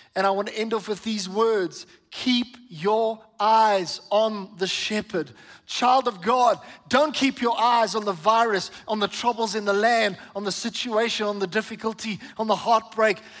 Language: English